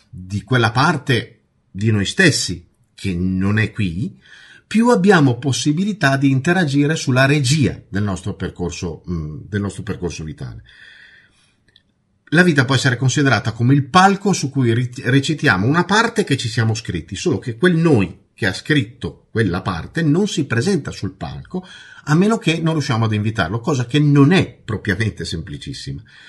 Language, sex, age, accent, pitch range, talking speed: Italian, male, 50-69, native, 100-150 Hz, 155 wpm